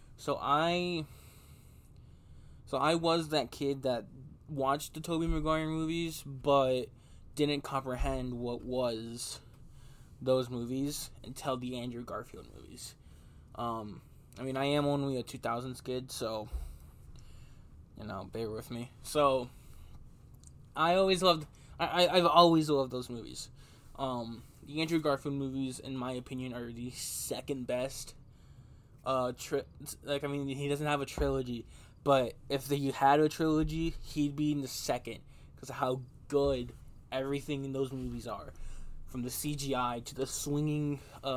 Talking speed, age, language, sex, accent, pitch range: 140 wpm, 20-39, English, male, American, 120-145 Hz